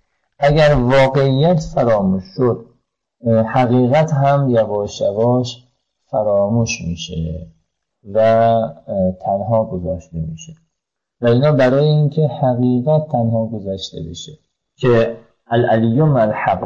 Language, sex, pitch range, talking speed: Persian, male, 110-135 Hz, 85 wpm